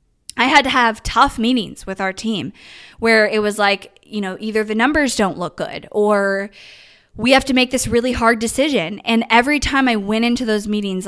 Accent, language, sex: American, English, female